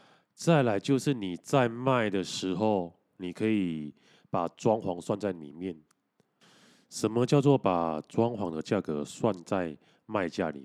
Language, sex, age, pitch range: Chinese, male, 20-39, 85-120 Hz